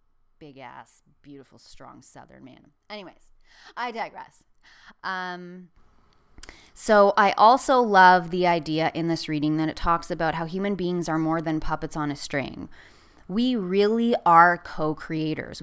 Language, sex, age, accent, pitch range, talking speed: English, female, 20-39, American, 155-195 Hz, 140 wpm